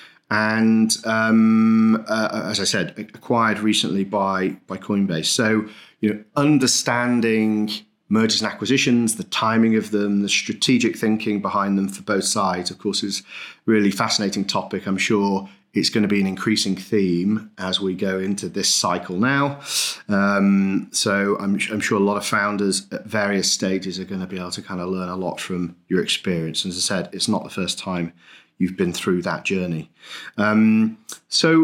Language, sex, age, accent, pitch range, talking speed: English, male, 30-49, British, 100-115 Hz, 180 wpm